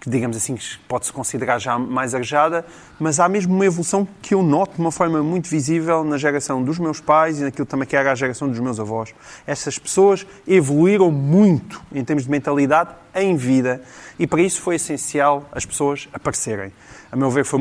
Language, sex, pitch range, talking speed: Portuguese, male, 125-160 Hz, 200 wpm